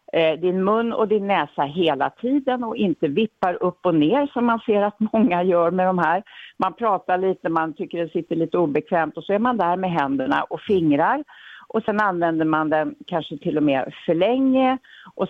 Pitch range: 150-210 Hz